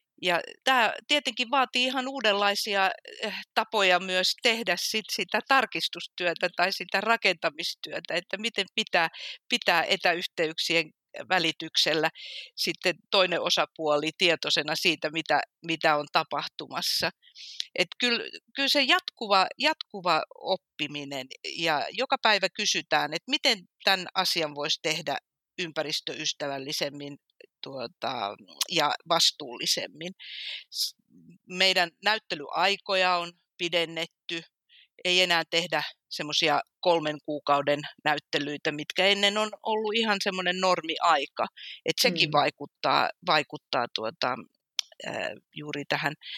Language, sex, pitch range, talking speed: Finnish, female, 160-215 Hz, 90 wpm